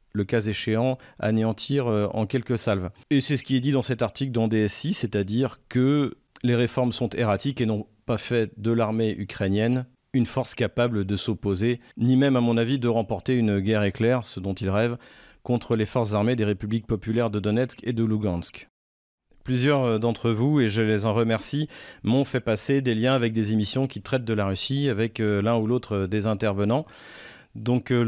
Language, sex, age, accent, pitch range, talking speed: French, male, 40-59, French, 110-130 Hz, 190 wpm